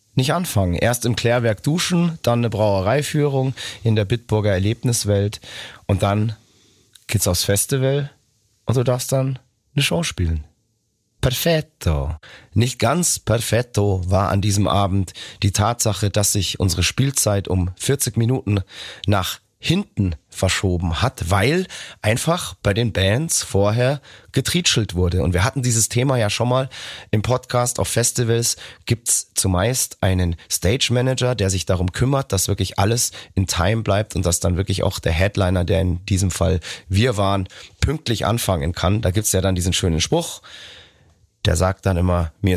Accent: German